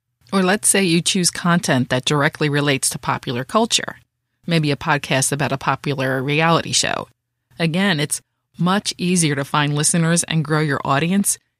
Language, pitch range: English, 150-185 Hz